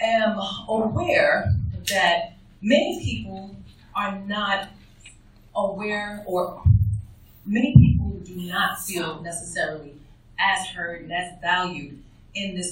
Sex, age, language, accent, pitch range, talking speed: female, 30-49, English, American, 160-215 Hz, 105 wpm